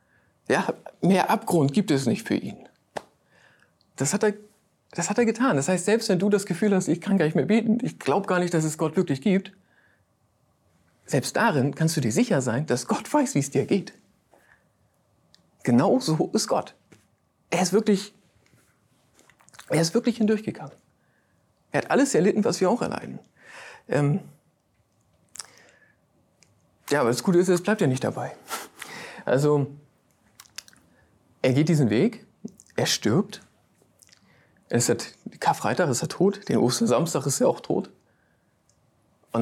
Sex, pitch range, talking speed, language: male, 140-205 Hz, 150 wpm, German